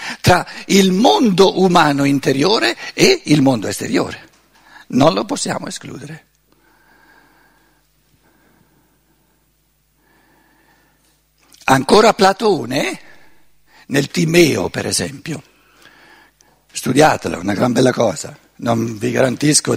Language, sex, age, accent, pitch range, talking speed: Italian, male, 60-79, native, 130-200 Hz, 85 wpm